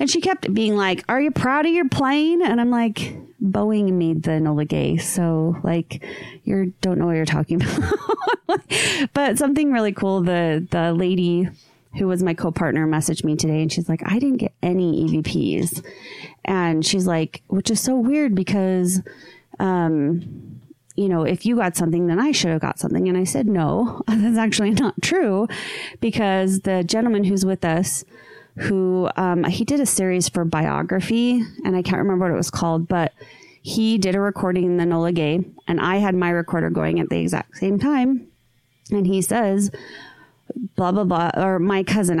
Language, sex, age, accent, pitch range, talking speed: English, female, 30-49, American, 170-210 Hz, 185 wpm